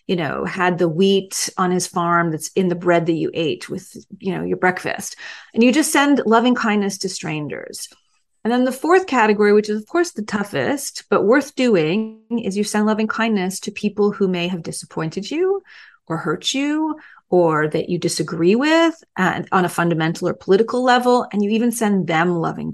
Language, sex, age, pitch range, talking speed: English, female, 30-49, 175-225 Hz, 200 wpm